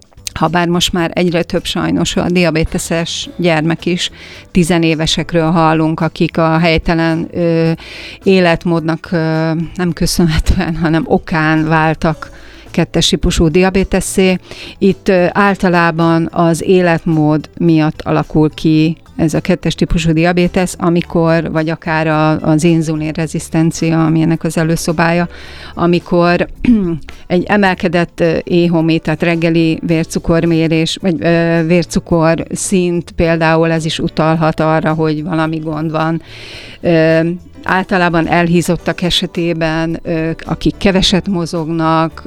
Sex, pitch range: female, 160-175 Hz